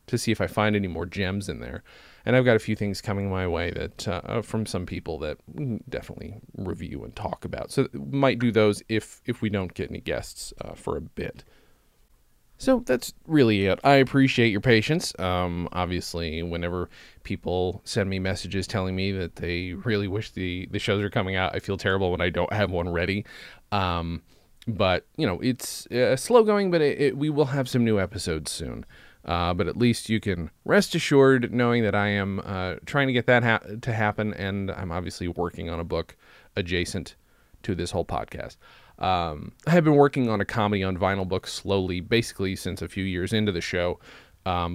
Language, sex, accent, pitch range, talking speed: English, male, American, 90-115 Hz, 205 wpm